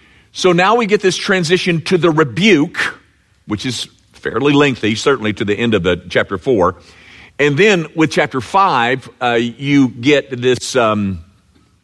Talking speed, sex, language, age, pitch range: 150 wpm, male, English, 50-69, 105-175 Hz